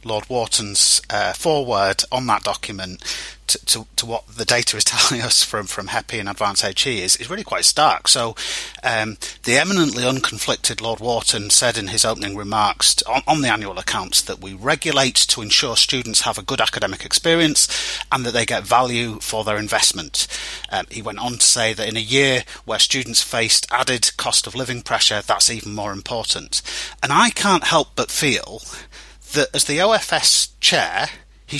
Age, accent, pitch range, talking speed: 30-49, British, 110-165 Hz, 185 wpm